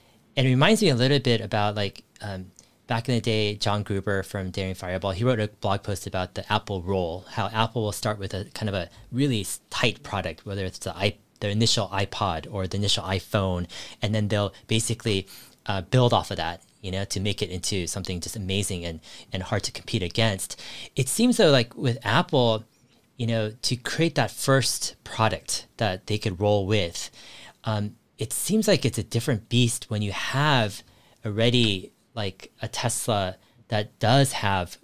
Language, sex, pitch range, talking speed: English, male, 95-120 Hz, 190 wpm